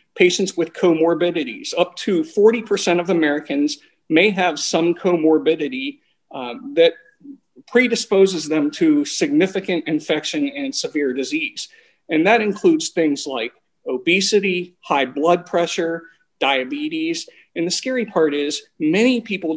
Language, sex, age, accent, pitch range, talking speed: English, male, 40-59, American, 160-255 Hz, 120 wpm